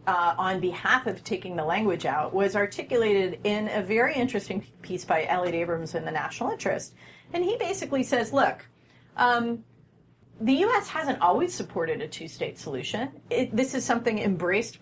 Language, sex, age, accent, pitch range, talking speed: English, female, 40-59, American, 180-255 Hz, 165 wpm